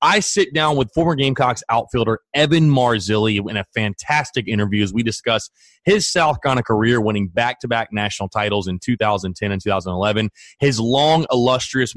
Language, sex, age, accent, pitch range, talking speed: English, male, 30-49, American, 105-135 Hz, 155 wpm